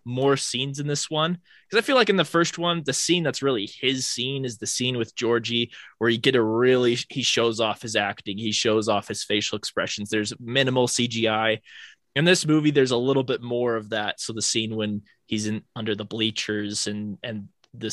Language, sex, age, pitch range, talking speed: English, male, 20-39, 105-130 Hz, 220 wpm